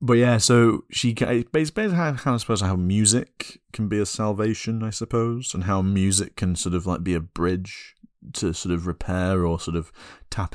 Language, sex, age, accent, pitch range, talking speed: English, male, 30-49, British, 80-95 Hz, 205 wpm